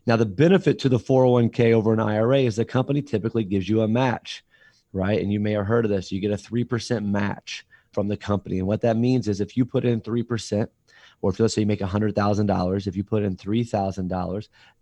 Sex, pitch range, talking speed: male, 100-120 Hz, 225 wpm